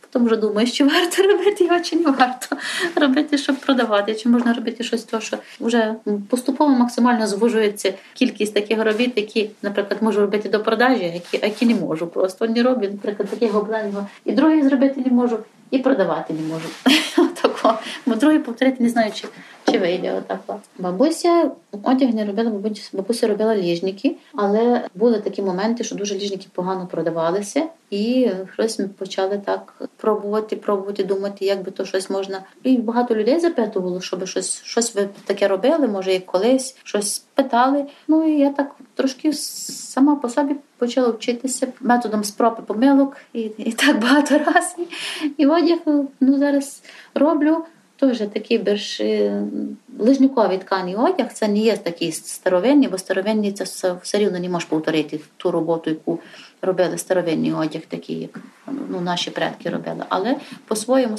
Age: 30-49